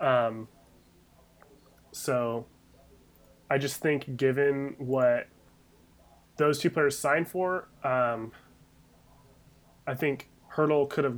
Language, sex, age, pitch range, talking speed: English, male, 20-39, 120-145 Hz, 95 wpm